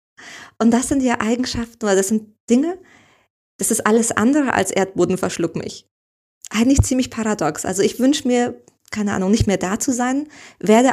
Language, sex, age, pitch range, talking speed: German, female, 20-39, 190-235 Hz, 170 wpm